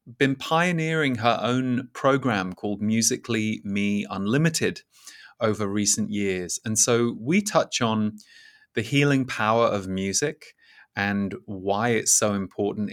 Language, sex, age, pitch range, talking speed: English, male, 20-39, 100-125 Hz, 125 wpm